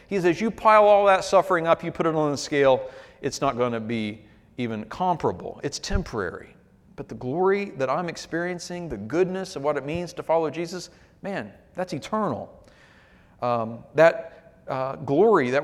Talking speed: 180 wpm